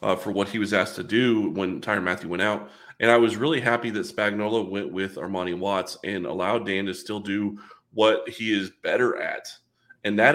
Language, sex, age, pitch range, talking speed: English, male, 20-39, 95-115 Hz, 215 wpm